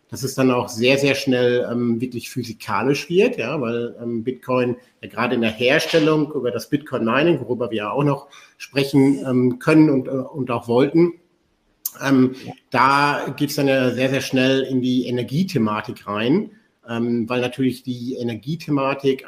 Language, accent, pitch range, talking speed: German, German, 125-145 Hz, 165 wpm